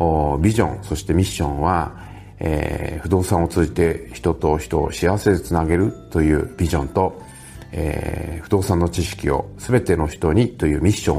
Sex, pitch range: male, 75-100 Hz